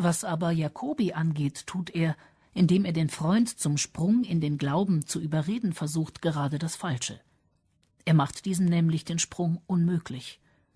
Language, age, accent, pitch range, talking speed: German, 50-69, German, 150-195 Hz, 155 wpm